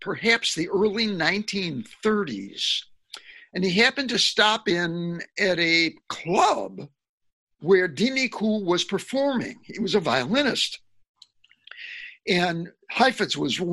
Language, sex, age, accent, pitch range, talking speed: English, male, 60-79, American, 175-235 Hz, 110 wpm